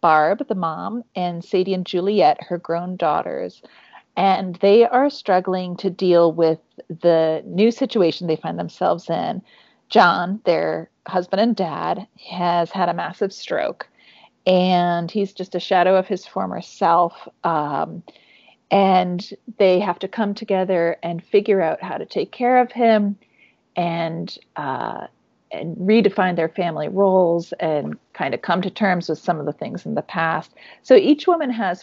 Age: 40-59